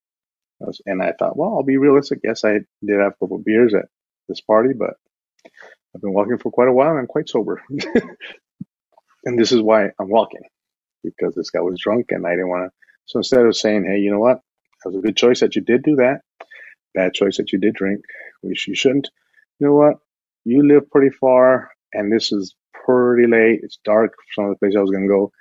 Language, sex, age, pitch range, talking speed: English, male, 30-49, 105-145 Hz, 225 wpm